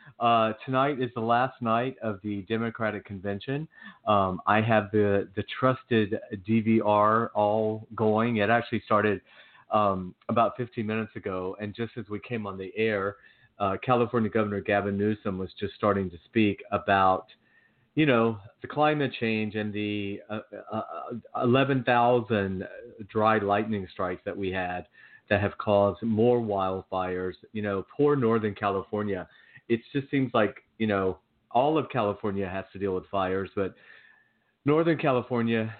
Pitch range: 100-115 Hz